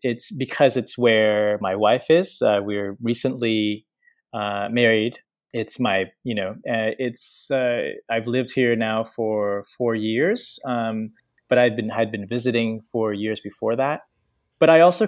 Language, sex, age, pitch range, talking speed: English, male, 20-39, 110-140 Hz, 160 wpm